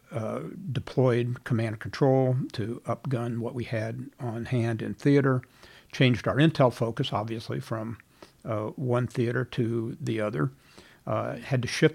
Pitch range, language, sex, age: 110-125 Hz, English, male, 60-79